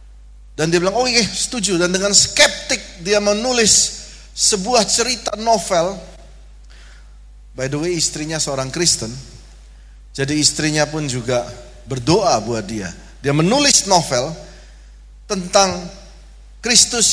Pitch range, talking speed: 145-215 Hz, 110 wpm